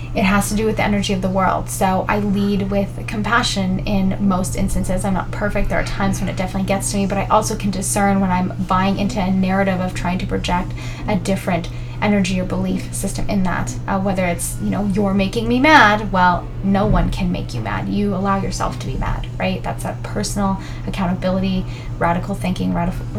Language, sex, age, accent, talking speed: English, female, 20-39, American, 215 wpm